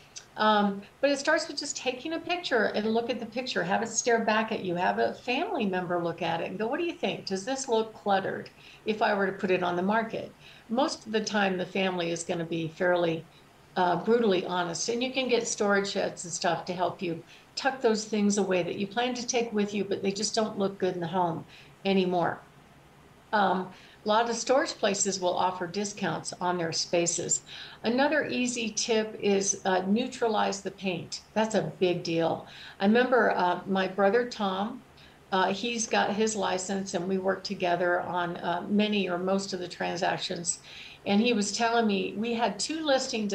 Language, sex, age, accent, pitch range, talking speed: English, female, 60-79, American, 180-230 Hz, 205 wpm